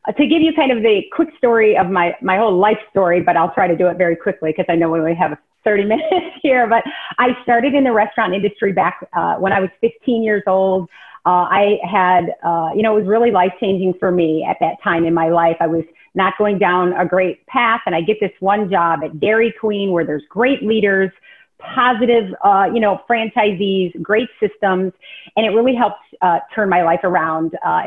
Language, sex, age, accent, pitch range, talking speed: English, female, 30-49, American, 180-230 Hz, 225 wpm